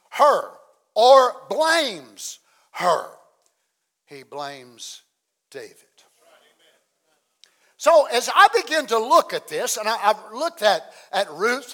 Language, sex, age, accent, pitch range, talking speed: English, male, 60-79, American, 215-290 Hz, 105 wpm